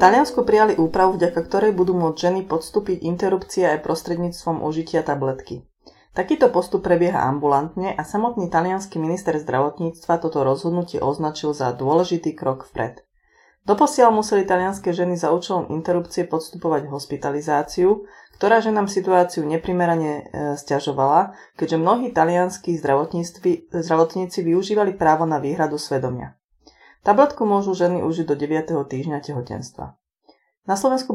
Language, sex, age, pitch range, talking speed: Slovak, female, 30-49, 155-185 Hz, 125 wpm